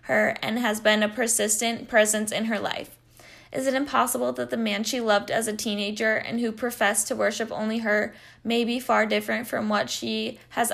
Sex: female